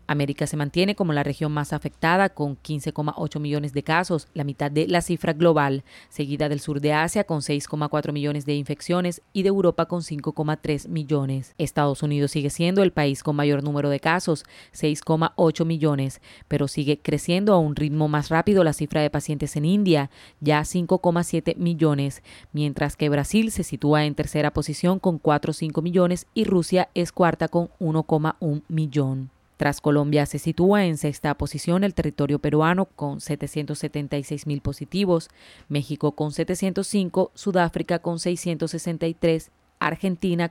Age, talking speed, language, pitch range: 30-49, 155 wpm, Spanish, 145-170 Hz